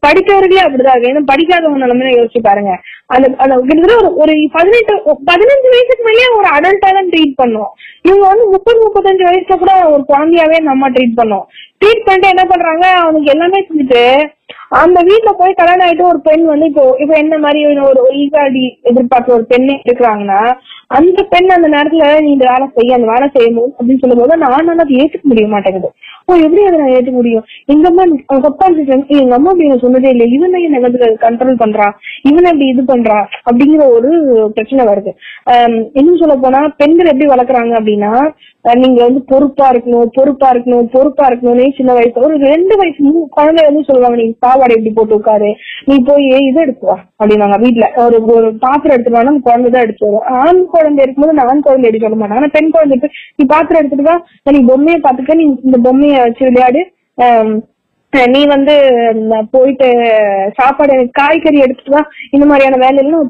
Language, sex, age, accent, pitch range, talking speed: Tamil, female, 20-39, native, 245-320 Hz, 165 wpm